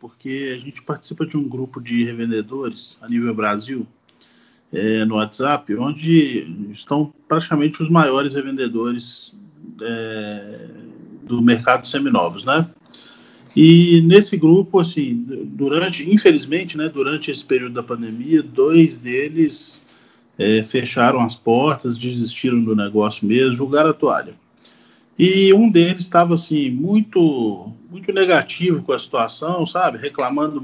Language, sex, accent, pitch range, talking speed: Portuguese, male, Brazilian, 115-165 Hz, 120 wpm